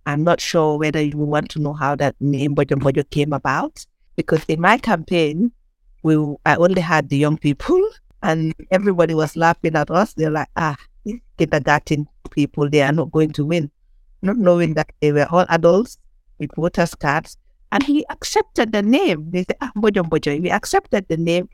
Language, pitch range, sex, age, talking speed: English, 145-180 Hz, female, 60-79, 185 wpm